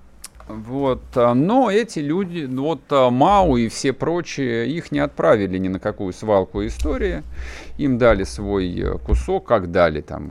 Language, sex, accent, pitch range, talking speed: Russian, male, native, 90-125 Hz, 140 wpm